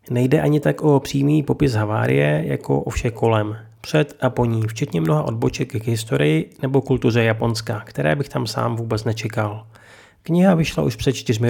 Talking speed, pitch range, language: 175 wpm, 110-145 Hz, Czech